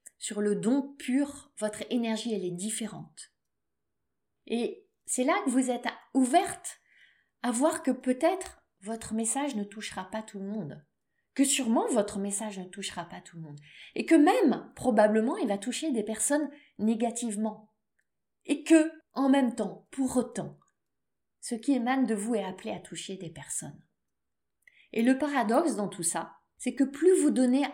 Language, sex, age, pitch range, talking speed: French, female, 20-39, 200-265 Hz, 165 wpm